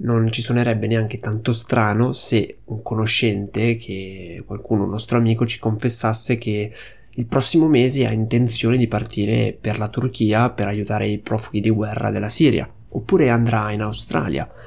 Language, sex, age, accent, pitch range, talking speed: Italian, male, 20-39, native, 110-125 Hz, 160 wpm